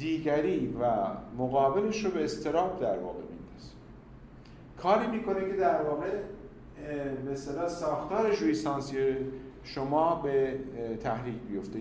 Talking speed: 110 wpm